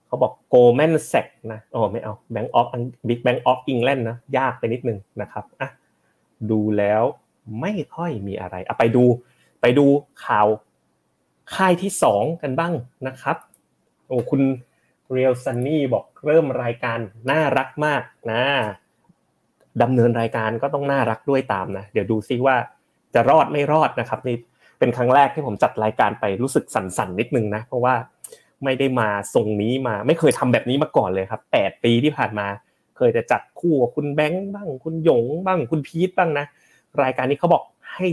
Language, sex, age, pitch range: Thai, male, 20-39, 115-145 Hz